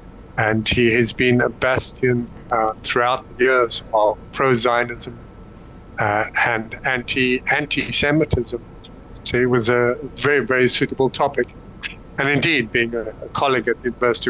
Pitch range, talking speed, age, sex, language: 110-125 Hz, 145 wpm, 60-79, male, English